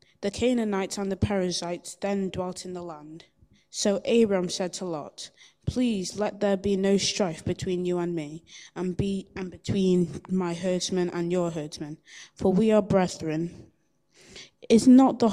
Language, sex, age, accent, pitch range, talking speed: English, female, 20-39, British, 175-200 Hz, 160 wpm